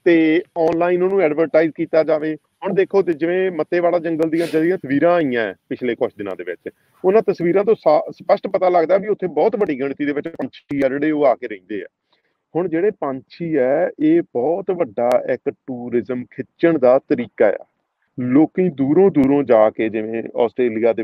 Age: 40-59